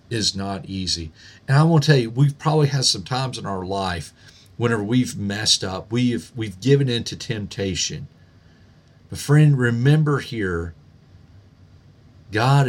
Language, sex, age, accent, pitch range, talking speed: English, male, 50-69, American, 95-155 Hz, 140 wpm